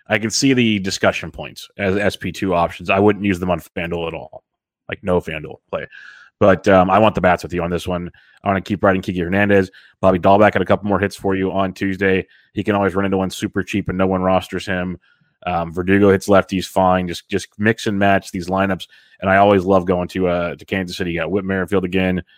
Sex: male